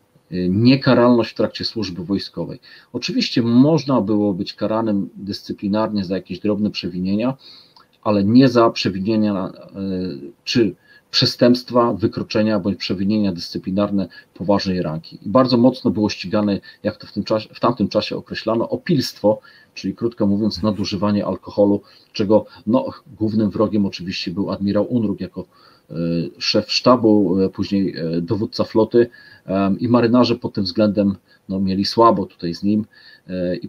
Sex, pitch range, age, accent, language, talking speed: male, 95-110 Hz, 40-59, native, Polish, 130 wpm